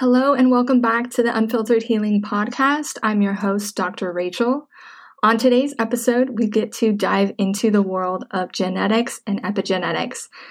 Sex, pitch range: female, 200-230 Hz